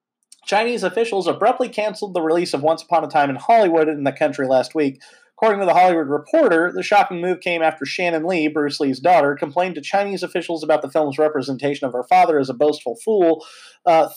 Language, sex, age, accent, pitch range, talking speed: English, male, 30-49, American, 140-185 Hz, 205 wpm